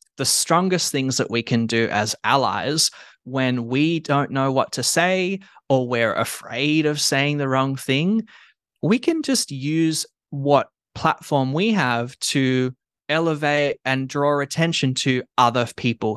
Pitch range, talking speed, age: 115-140 Hz, 150 wpm, 20-39